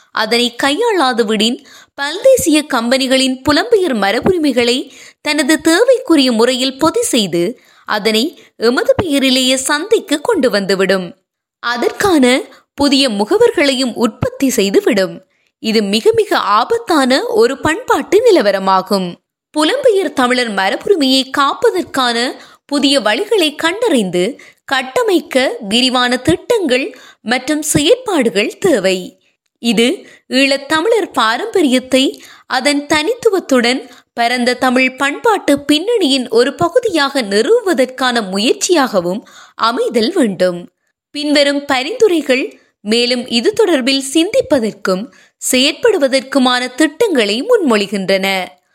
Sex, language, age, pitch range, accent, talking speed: female, Tamil, 20-39, 240-335 Hz, native, 70 wpm